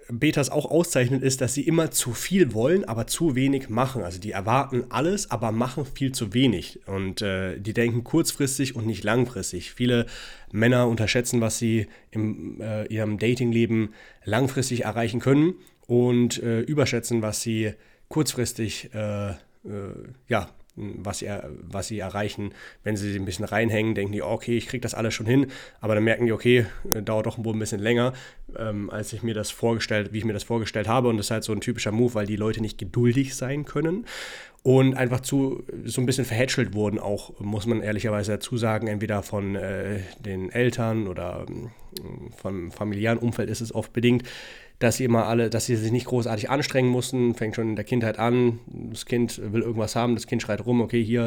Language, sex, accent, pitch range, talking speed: German, male, German, 110-125 Hz, 190 wpm